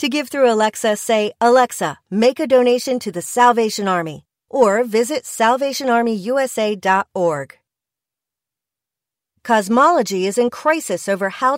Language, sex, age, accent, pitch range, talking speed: English, female, 40-59, American, 180-255 Hz, 115 wpm